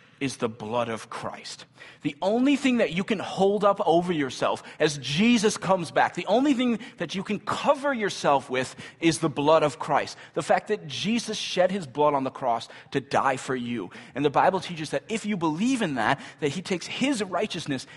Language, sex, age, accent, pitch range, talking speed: English, male, 30-49, American, 140-210 Hz, 205 wpm